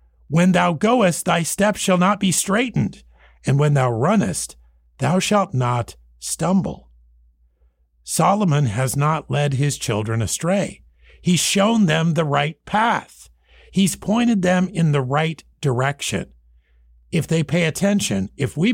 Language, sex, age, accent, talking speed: English, male, 50-69, American, 140 wpm